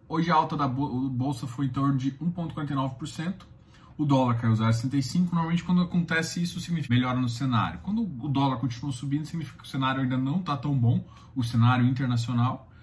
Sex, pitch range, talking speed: male, 115-140 Hz, 185 wpm